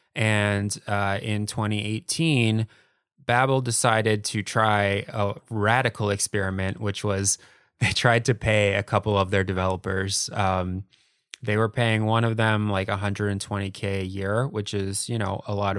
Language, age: English, 20-39